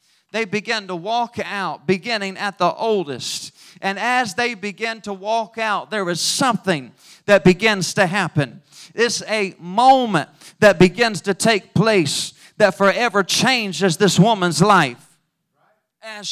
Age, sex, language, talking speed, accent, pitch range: 40-59, male, English, 140 wpm, American, 180-230 Hz